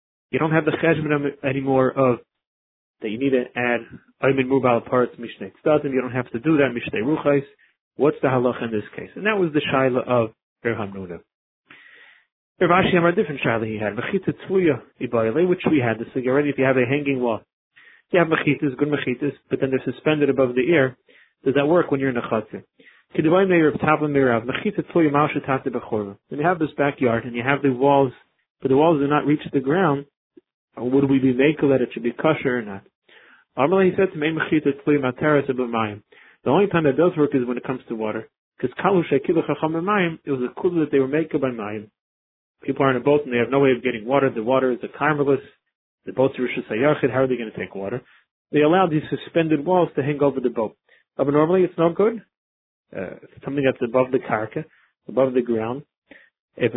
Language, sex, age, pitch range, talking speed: English, male, 30-49, 125-150 Hz, 200 wpm